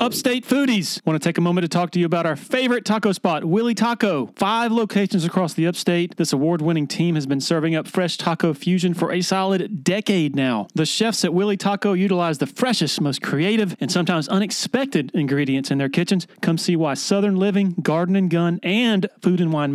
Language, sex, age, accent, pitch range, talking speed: English, male, 40-59, American, 160-195 Hz, 210 wpm